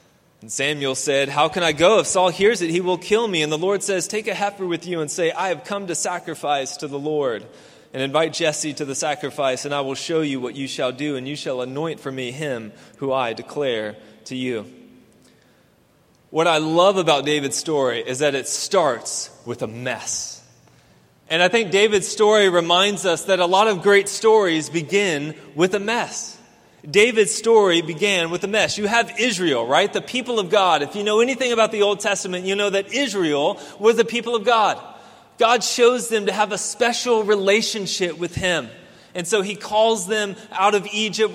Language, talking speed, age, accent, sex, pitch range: English, 205 wpm, 20-39, American, male, 160-215 Hz